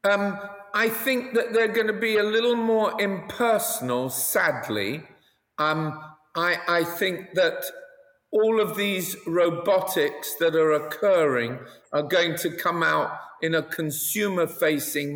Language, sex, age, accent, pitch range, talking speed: English, male, 50-69, British, 145-185 Hz, 130 wpm